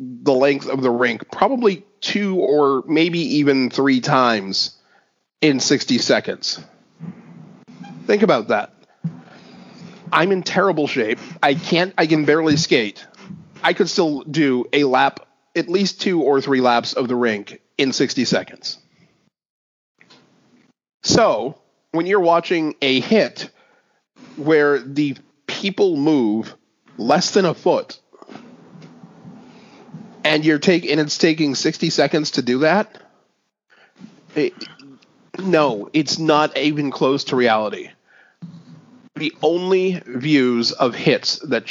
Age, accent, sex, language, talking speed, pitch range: 30-49, American, male, English, 120 wpm, 125-165 Hz